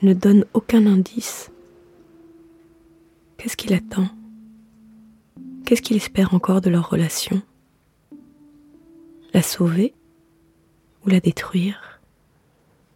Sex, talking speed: female, 90 wpm